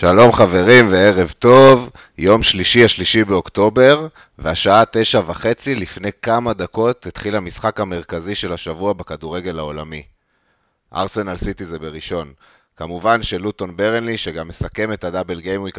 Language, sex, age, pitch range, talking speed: Hebrew, male, 30-49, 85-110 Hz, 125 wpm